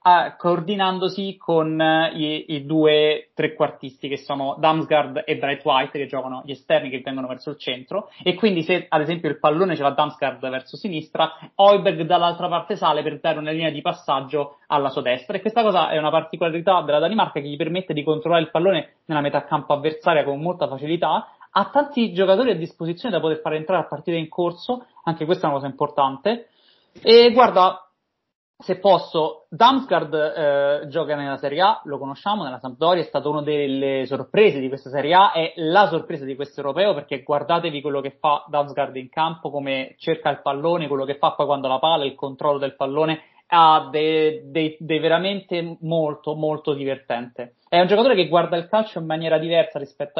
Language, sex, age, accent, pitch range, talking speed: Italian, male, 30-49, native, 145-175 Hz, 190 wpm